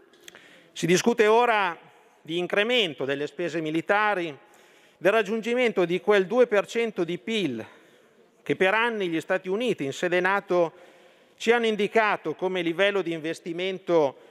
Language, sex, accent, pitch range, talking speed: Italian, male, native, 170-210 Hz, 130 wpm